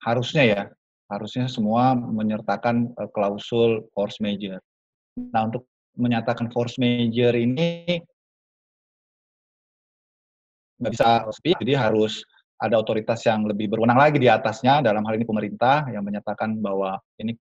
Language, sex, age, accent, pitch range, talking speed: Indonesian, male, 30-49, native, 110-135 Hz, 125 wpm